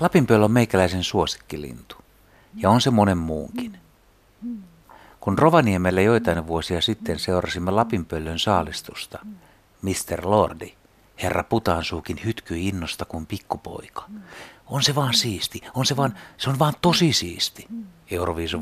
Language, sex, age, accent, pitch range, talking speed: Finnish, male, 60-79, native, 85-115 Hz, 120 wpm